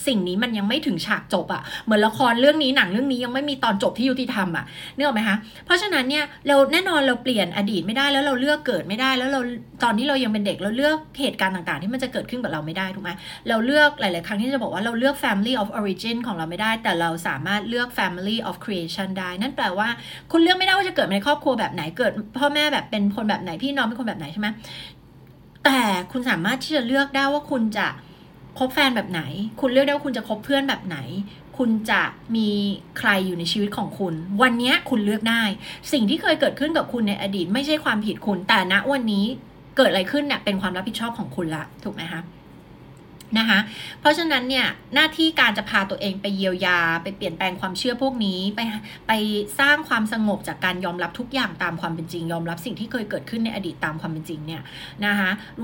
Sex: female